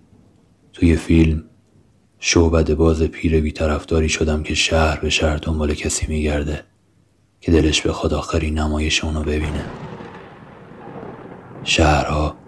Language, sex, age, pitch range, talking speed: Persian, male, 30-49, 75-85 Hz, 105 wpm